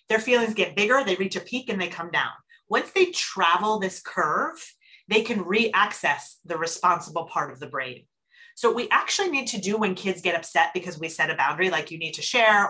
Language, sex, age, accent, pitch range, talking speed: English, female, 30-49, American, 175-240 Hz, 220 wpm